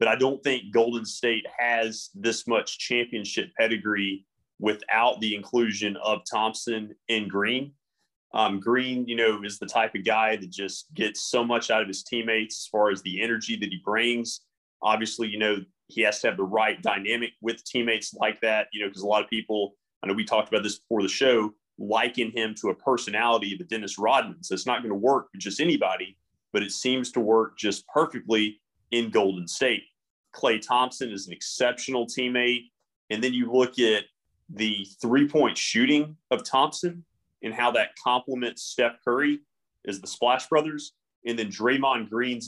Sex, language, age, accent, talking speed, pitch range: male, English, 30-49, American, 185 wpm, 105-125 Hz